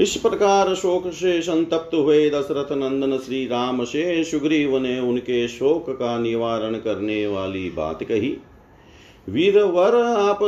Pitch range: 135-170 Hz